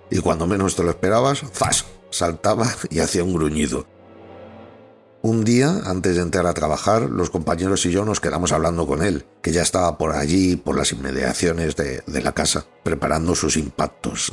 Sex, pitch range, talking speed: male, 80-100 Hz, 180 wpm